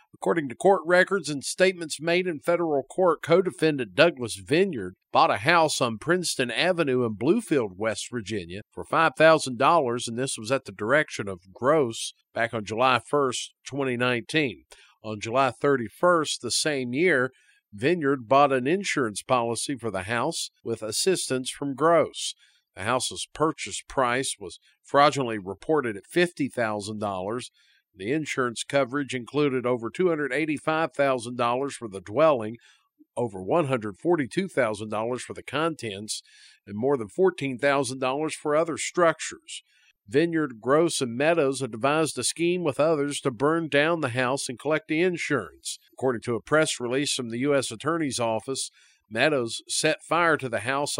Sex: male